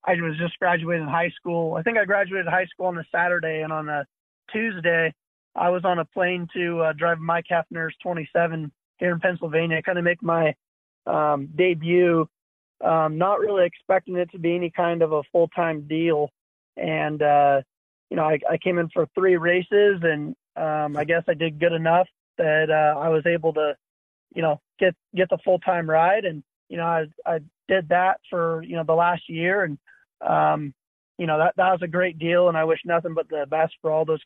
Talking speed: 210 wpm